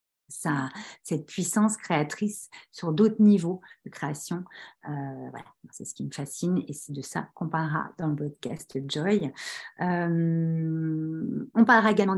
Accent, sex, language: French, female, French